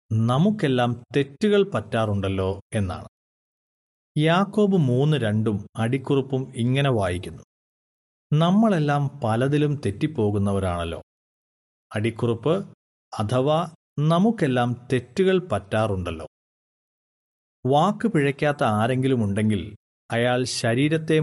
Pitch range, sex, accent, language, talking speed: 110-160 Hz, male, native, Malayalam, 65 wpm